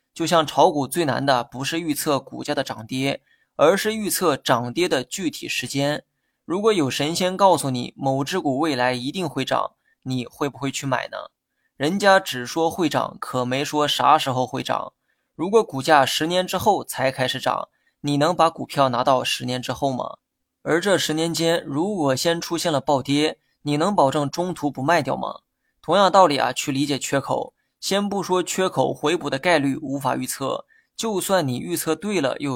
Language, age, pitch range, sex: Chinese, 20-39, 135-165 Hz, male